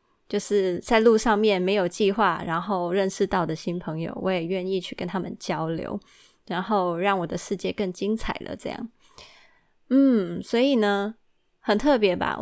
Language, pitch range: Chinese, 185-235 Hz